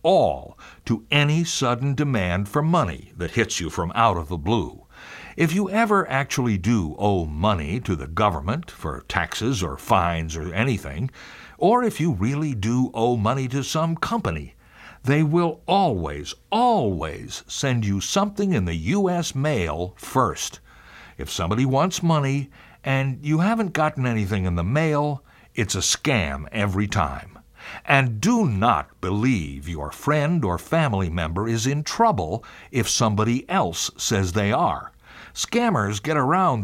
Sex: male